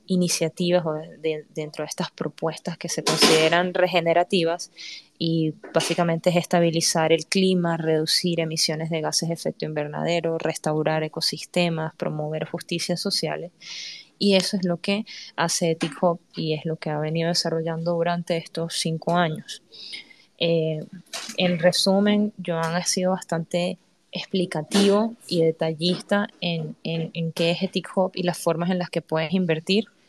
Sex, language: female, Spanish